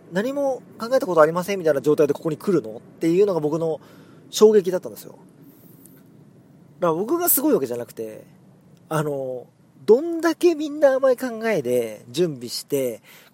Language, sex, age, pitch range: Japanese, male, 40-59, 140-215 Hz